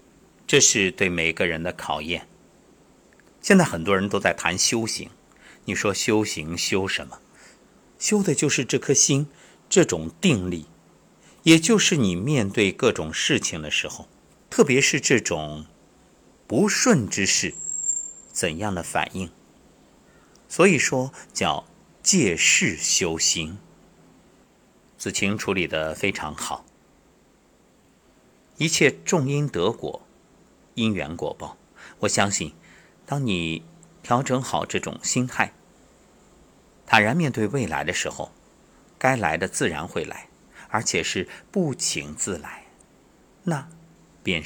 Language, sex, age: Chinese, male, 50-69